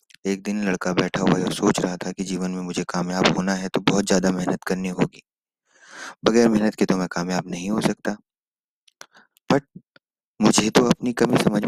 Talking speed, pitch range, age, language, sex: 185 wpm, 95-115 Hz, 20-39, Hindi, male